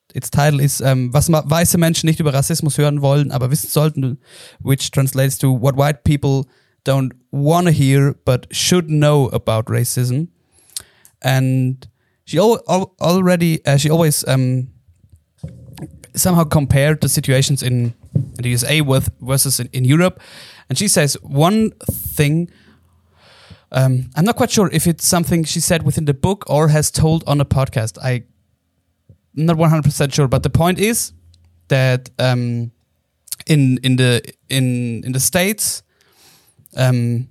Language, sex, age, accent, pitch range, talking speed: English, male, 20-39, German, 125-155 Hz, 155 wpm